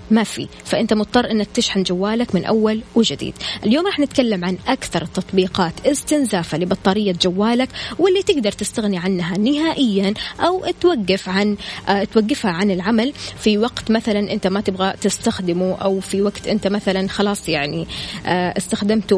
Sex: female